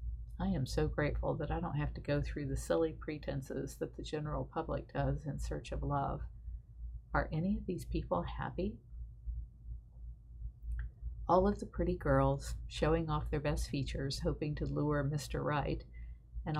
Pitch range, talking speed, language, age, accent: 110-160 Hz, 165 wpm, English, 50-69, American